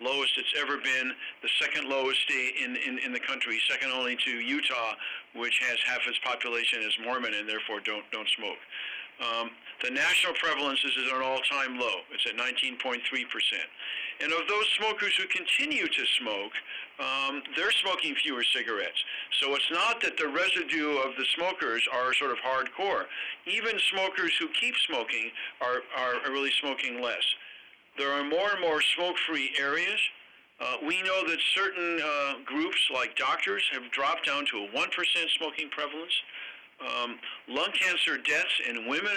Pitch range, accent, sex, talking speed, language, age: 135-175 Hz, American, male, 160 wpm, English, 50-69